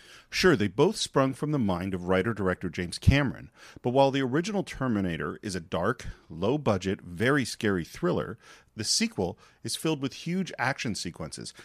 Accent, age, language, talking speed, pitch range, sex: American, 40-59, English, 160 wpm, 95-145 Hz, male